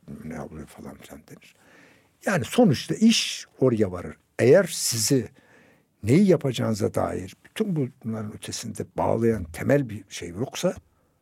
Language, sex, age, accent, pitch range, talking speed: Turkish, male, 60-79, native, 110-155 Hz, 125 wpm